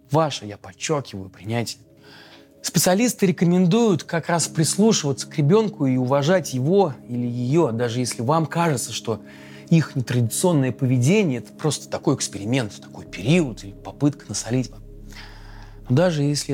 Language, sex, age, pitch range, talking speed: Russian, male, 30-49, 105-145 Hz, 130 wpm